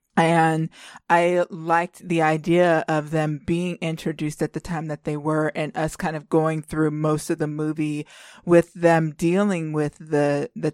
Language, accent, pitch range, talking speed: English, American, 155-175 Hz, 175 wpm